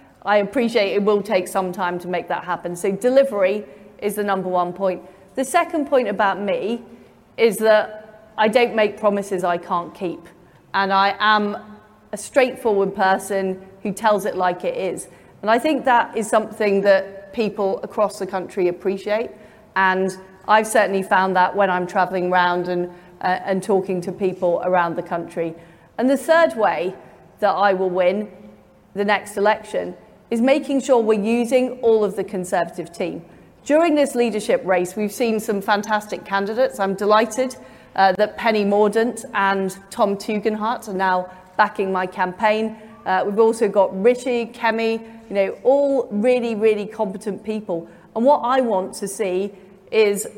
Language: English